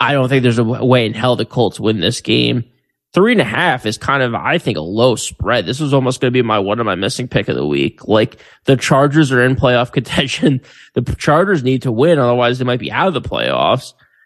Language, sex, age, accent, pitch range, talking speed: English, male, 20-39, American, 120-140 Hz, 255 wpm